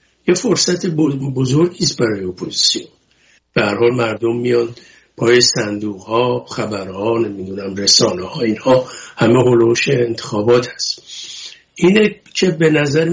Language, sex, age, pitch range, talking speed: English, male, 60-79, 115-140 Hz, 120 wpm